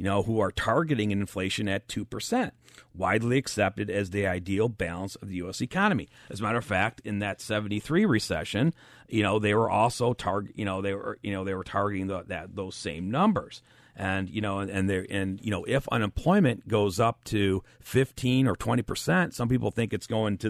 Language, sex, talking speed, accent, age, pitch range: English, male, 210 wpm, American, 40-59, 95-120 Hz